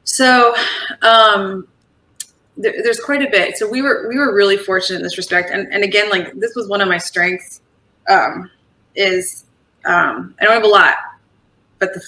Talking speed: 185 wpm